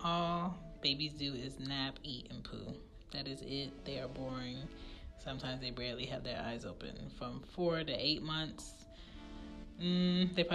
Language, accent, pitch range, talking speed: English, American, 125-165 Hz, 160 wpm